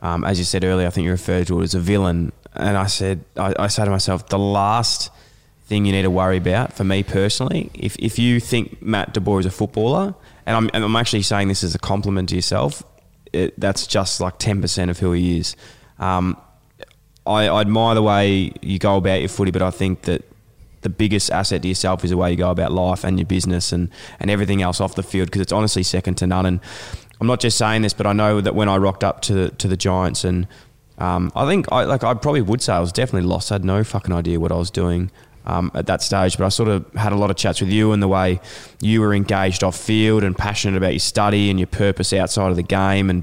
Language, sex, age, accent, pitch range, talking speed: English, male, 20-39, Australian, 95-110 Hz, 255 wpm